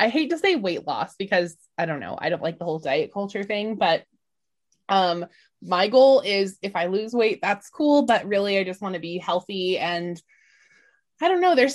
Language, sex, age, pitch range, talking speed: English, female, 20-39, 185-255 Hz, 215 wpm